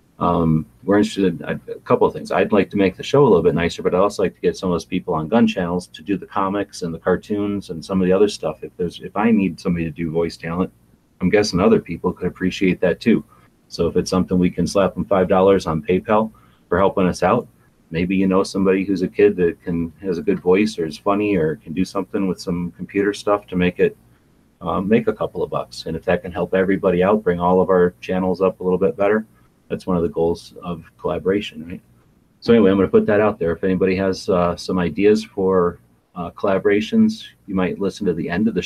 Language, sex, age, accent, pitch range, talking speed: English, male, 30-49, American, 85-100 Hz, 250 wpm